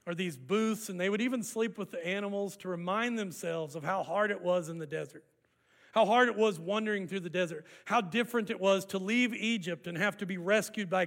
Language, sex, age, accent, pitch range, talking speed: English, male, 40-59, American, 175-230 Hz, 235 wpm